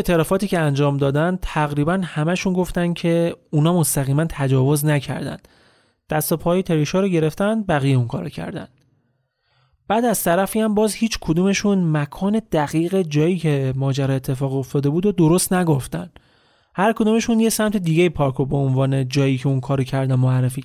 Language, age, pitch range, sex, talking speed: Persian, 30-49, 140-185 Hz, male, 160 wpm